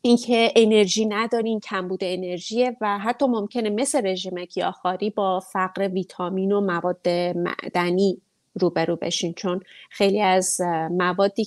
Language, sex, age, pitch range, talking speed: English, female, 30-49, 180-210 Hz, 130 wpm